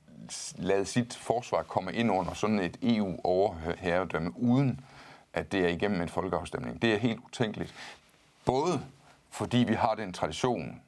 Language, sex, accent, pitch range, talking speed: Danish, male, native, 100-130 Hz, 150 wpm